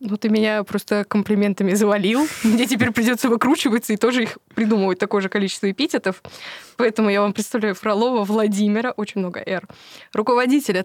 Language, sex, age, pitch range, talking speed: Russian, female, 20-39, 190-230 Hz, 155 wpm